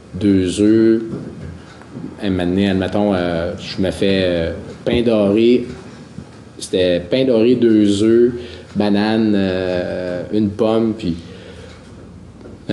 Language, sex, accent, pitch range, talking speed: French, male, Canadian, 95-115 Hz, 120 wpm